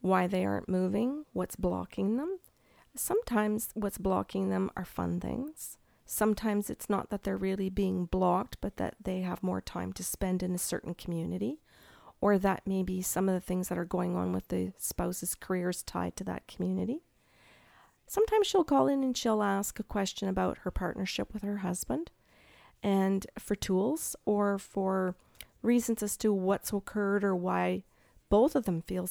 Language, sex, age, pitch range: English, female, 40-59, 180-220 Hz